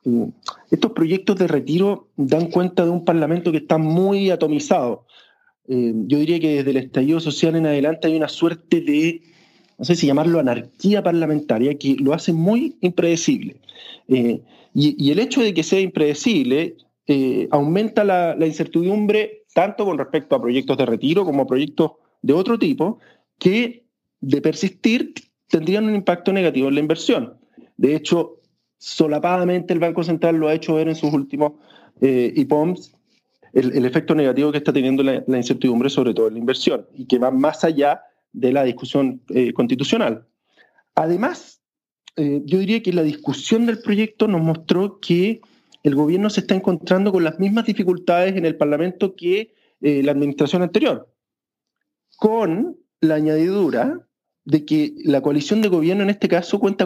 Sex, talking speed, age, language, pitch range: male, 165 wpm, 40-59, Spanish, 145-195 Hz